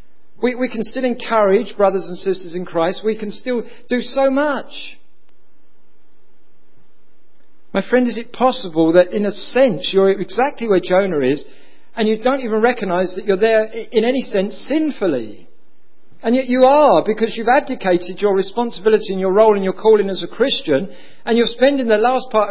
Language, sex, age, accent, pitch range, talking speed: English, male, 50-69, British, 135-220 Hz, 175 wpm